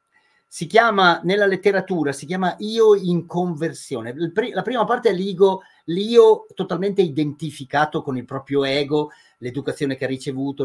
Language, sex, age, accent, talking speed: Italian, male, 40-59, native, 140 wpm